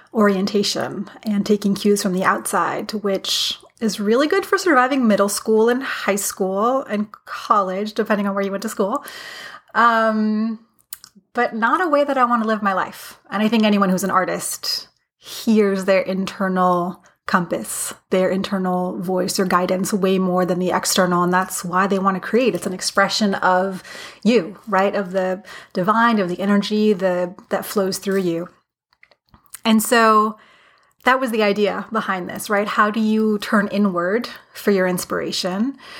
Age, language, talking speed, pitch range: 30-49, English, 165 wpm, 190-230 Hz